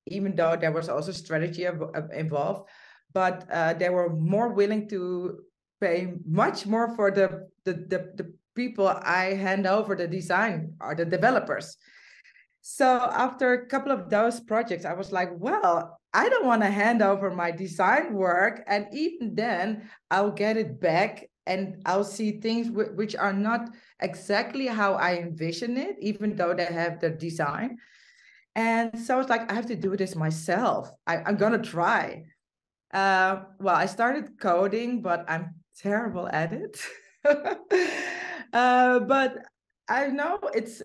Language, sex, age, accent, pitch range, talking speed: English, female, 20-39, Dutch, 170-225 Hz, 160 wpm